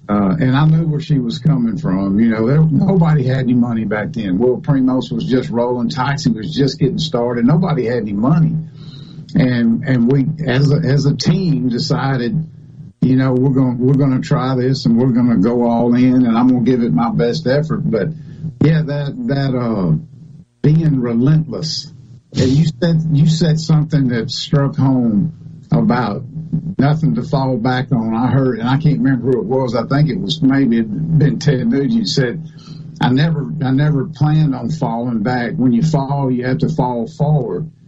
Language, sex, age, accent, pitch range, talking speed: English, male, 50-69, American, 130-155 Hz, 190 wpm